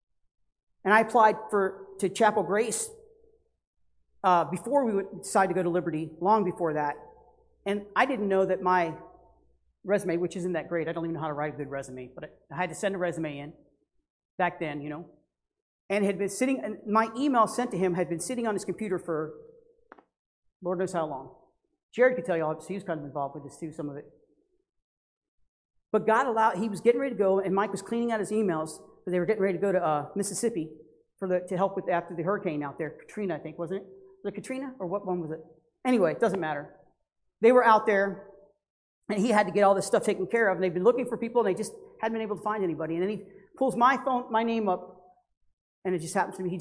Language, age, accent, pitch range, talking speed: English, 40-59, American, 170-225 Hz, 245 wpm